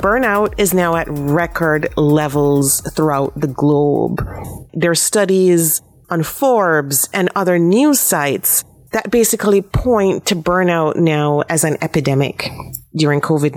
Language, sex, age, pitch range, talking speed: English, female, 30-49, 145-185 Hz, 130 wpm